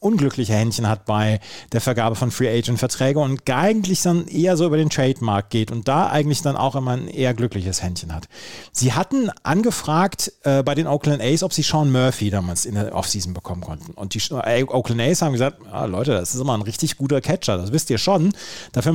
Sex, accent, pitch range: male, German, 115-160 Hz